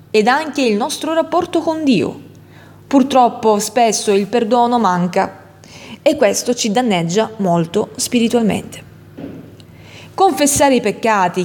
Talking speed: 110 wpm